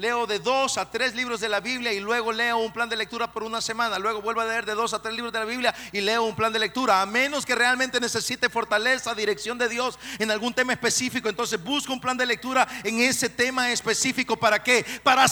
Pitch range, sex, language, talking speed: 235-265 Hz, male, Spanish, 245 wpm